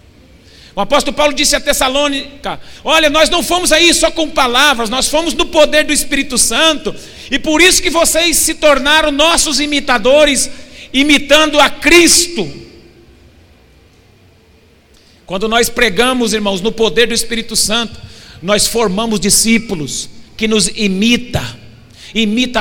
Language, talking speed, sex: Portuguese, 130 wpm, male